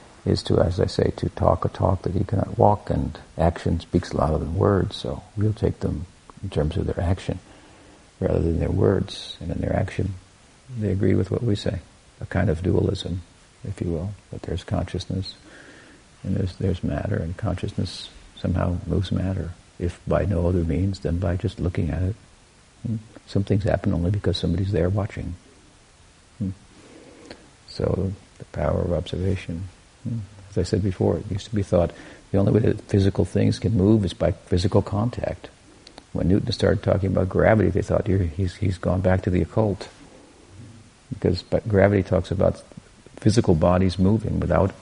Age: 60-79